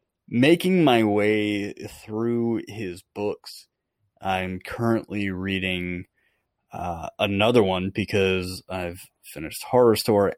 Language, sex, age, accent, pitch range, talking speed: English, male, 30-49, American, 90-110 Hz, 100 wpm